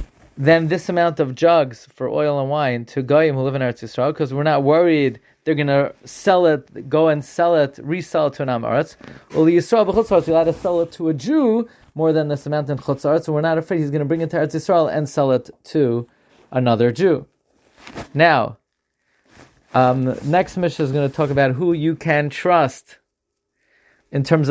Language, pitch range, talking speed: English, 140-165 Hz, 205 wpm